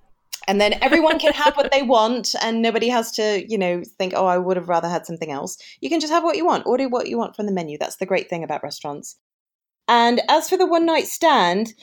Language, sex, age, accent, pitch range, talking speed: English, female, 30-49, British, 190-275 Hz, 255 wpm